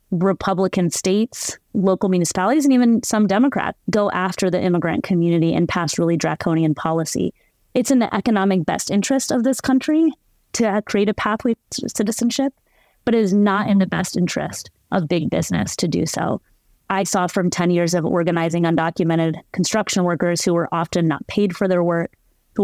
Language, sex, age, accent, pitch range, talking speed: English, female, 30-49, American, 160-200 Hz, 175 wpm